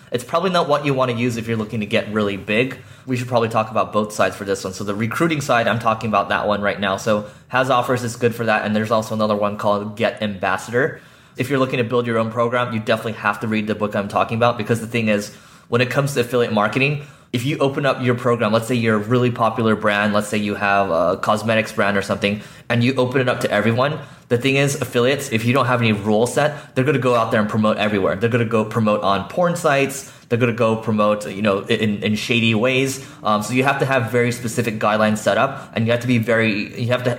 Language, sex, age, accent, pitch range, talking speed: English, male, 20-39, American, 105-125 Hz, 270 wpm